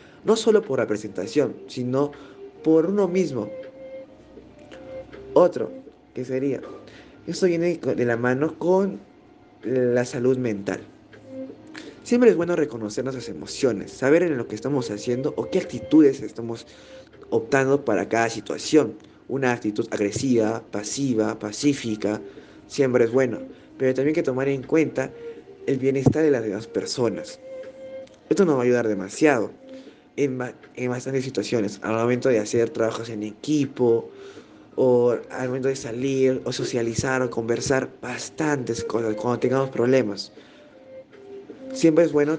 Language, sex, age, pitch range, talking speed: Filipino, male, 20-39, 120-170 Hz, 135 wpm